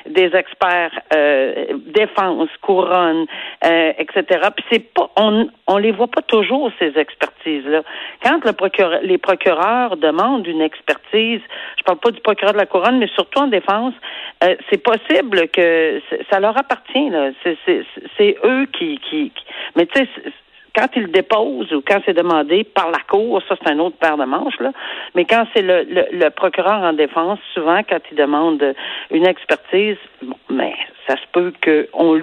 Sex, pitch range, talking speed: female, 160-230 Hz, 180 wpm